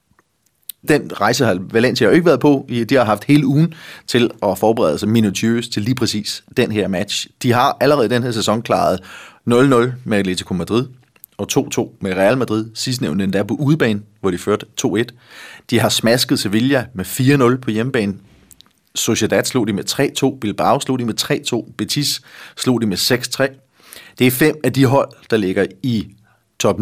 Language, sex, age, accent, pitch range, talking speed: Danish, male, 30-49, native, 100-130 Hz, 185 wpm